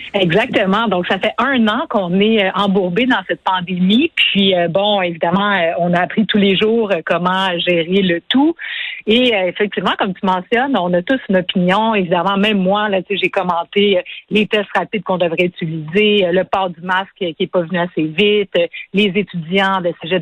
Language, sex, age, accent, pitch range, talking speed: French, female, 50-69, Canadian, 180-220 Hz, 180 wpm